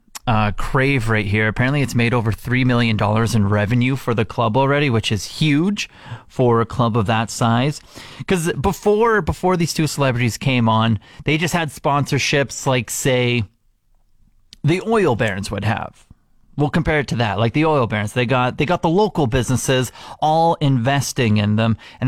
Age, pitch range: 30-49, 115-150 Hz